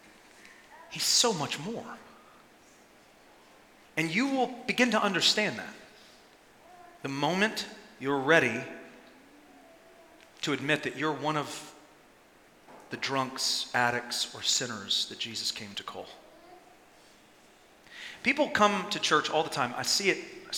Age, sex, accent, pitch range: 40-59, male, American, 155-215 Hz